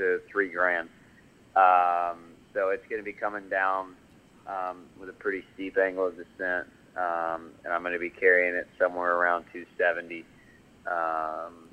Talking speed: 160 wpm